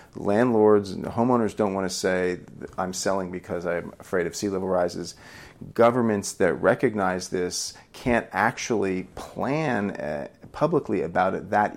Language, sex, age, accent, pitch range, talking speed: English, male, 40-59, American, 90-115 Hz, 140 wpm